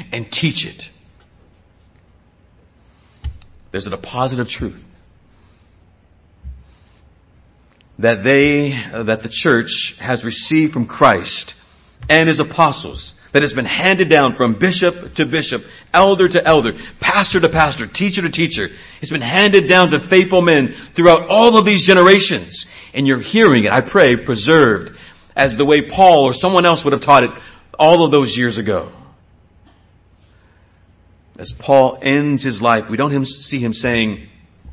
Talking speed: 145 wpm